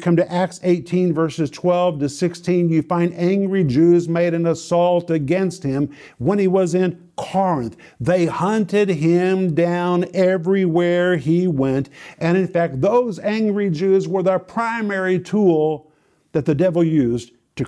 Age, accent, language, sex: 50-69, American, English, male